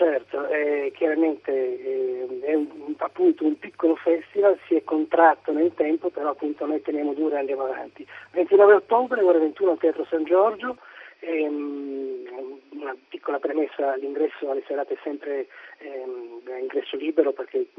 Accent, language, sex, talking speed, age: native, Italian, male, 150 wpm, 30-49